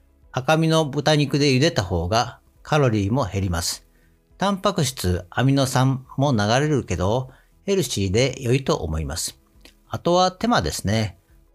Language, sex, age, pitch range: Japanese, male, 50-69, 95-155 Hz